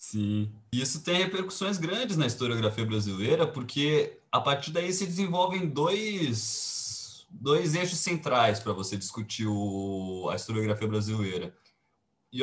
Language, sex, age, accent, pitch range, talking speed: Portuguese, male, 20-39, Brazilian, 105-165 Hz, 125 wpm